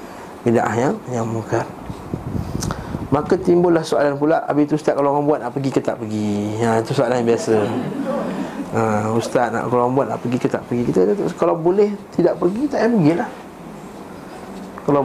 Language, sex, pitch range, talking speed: Malay, male, 125-170 Hz, 180 wpm